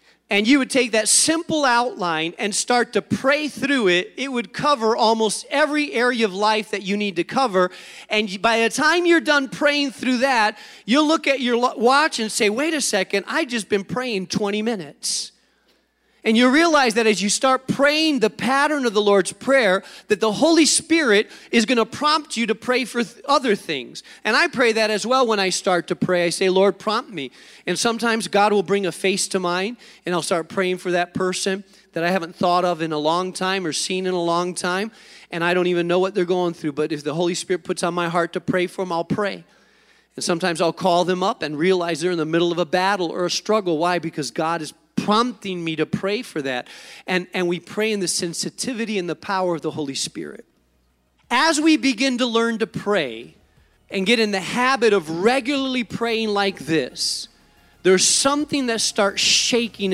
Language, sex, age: English, male, 40-59